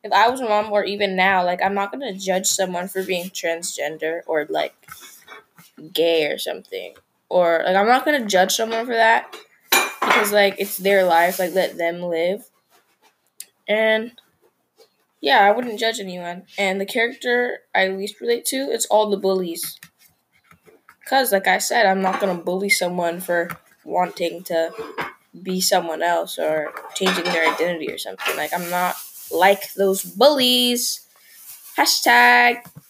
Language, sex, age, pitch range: English, female, 10-29, 185-240 Hz